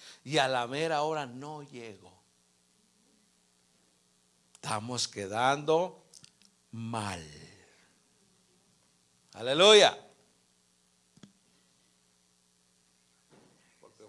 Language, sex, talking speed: Spanish, male, 50 wpm